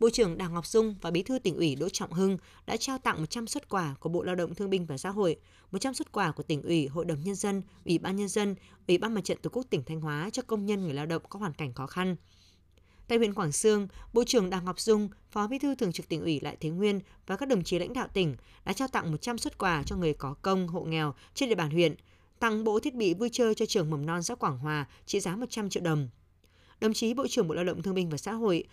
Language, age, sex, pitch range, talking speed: Vietnamese, 20-39, female, 160-225 Hz, 280 wpm